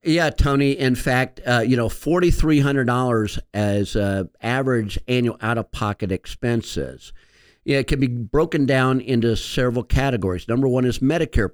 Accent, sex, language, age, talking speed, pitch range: American, male, English, 50-69, 145 wpm, 105-135 Hz